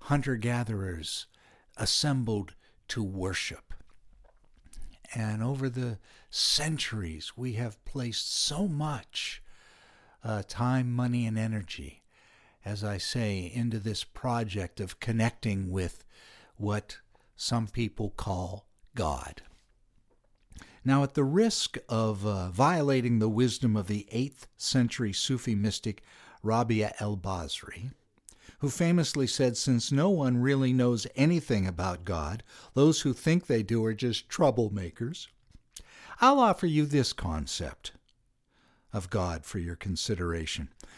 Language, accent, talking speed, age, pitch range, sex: English, American, 115 wpm, 60-79, 105-135 Hz, male